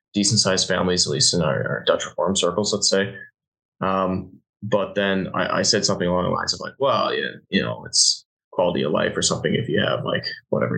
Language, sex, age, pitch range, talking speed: English, male, 20-39, 95-115 Hz, 215 wpm